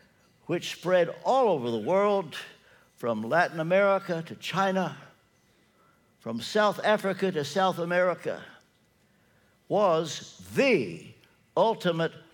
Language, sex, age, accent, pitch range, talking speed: English, male, 60-79, American, 155-205 Hz, 95 wpm